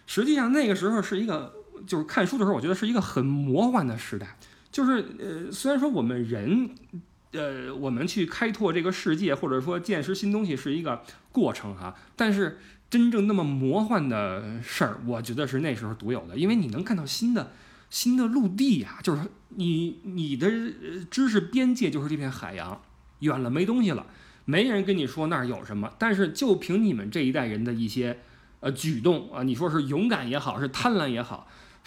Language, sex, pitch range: Chinese, male, 135-220 Hz